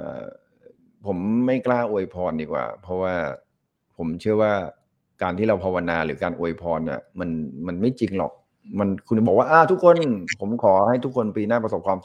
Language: Thai